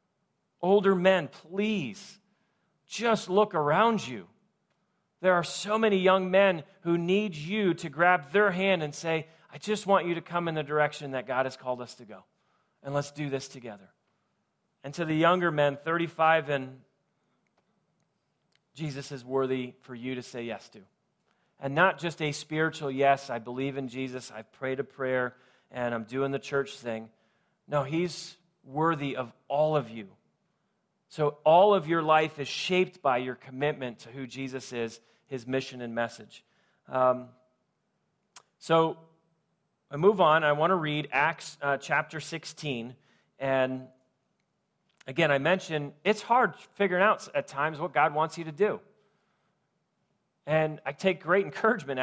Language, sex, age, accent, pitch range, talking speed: English, male, 40-59, American, 135-185 Hz, 160 wpm